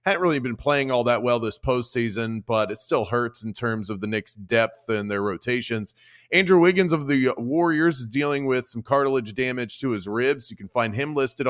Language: English